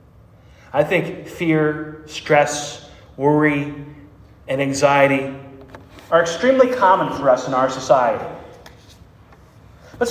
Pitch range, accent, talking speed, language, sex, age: 145-205 Hz, American, 95 wpm, English, male, 30-49